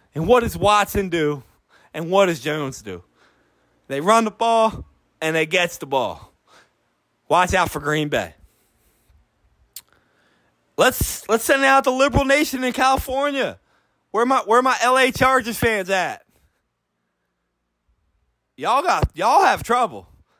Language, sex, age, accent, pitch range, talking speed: English, male, 20-39, American, 175-255 Hz, 140 wpm